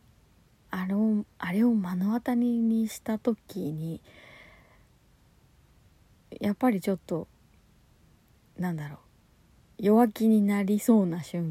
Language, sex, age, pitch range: Japanese, female, 30-49, 170-225 Hz